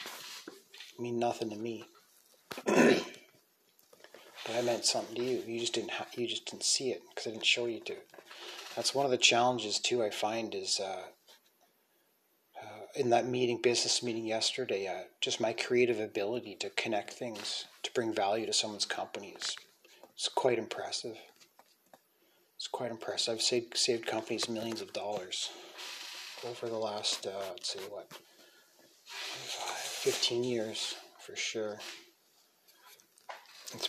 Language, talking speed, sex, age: English, 145 wpm, male, 30-49